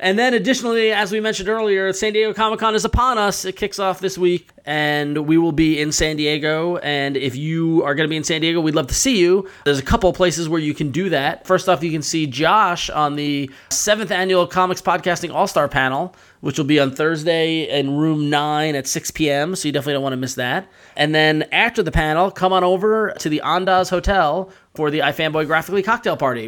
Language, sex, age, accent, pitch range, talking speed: English, male, 30-49, American, 130-170 Hz, 230 wpm